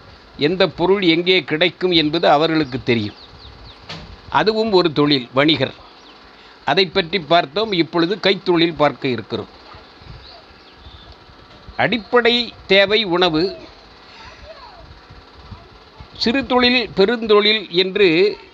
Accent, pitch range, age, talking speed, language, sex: native, 150-200 Hz, 50-69, 80 wpm, Tamil, male